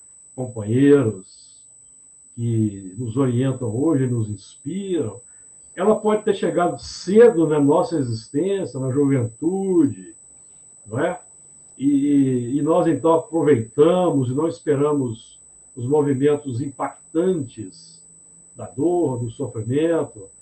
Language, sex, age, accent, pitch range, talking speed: Portuguese, male, 60-79, Brazilian, 120-175 Hz, 100 wpm